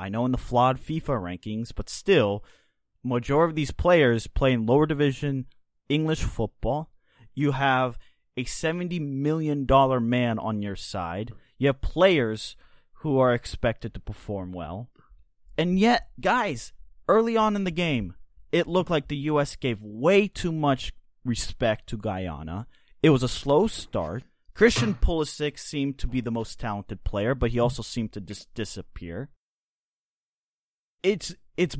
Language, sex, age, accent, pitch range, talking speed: English, male, 30-49, American, 105-155 Hz, 155 wpm